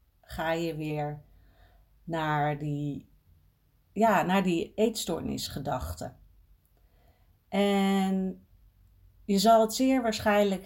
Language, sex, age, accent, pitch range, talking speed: Dutch, female, 50-69, Dutch, 160-210 Hz, 75 wpm